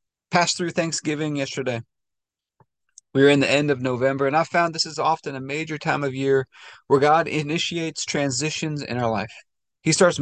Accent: American